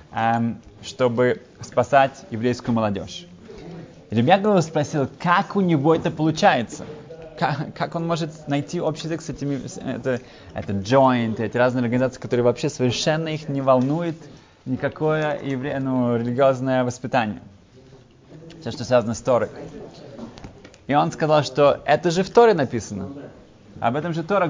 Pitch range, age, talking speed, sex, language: 115-155 Hz, 20-39, 135 wpm, male, Russian